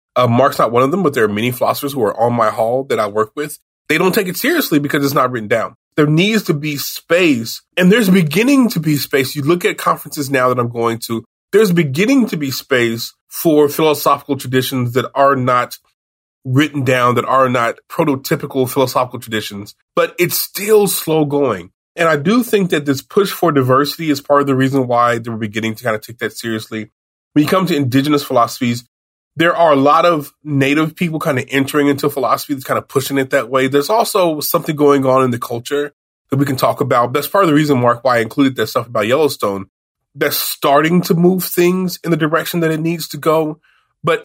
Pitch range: 130-170 Hz